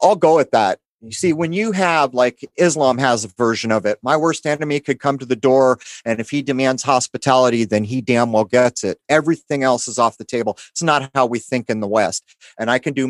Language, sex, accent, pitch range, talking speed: English, male, American, 115-150 Hz, 245 wpm